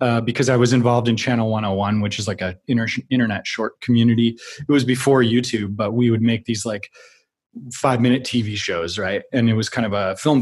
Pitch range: 115-130 Hz